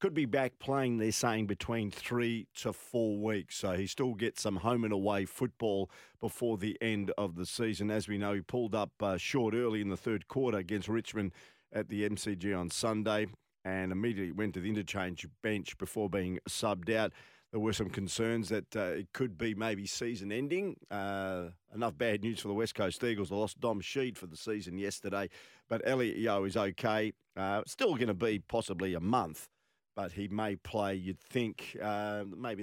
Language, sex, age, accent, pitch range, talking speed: English, male, 50-69, Australian, 100-120 Hz, 195 wpm